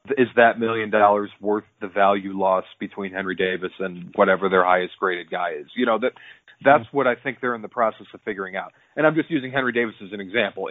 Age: 40-59